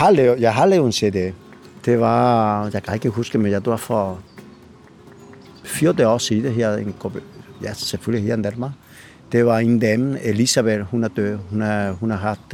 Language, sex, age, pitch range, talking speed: Danish, male, 60-79, 105-125 Hz, 160 wpm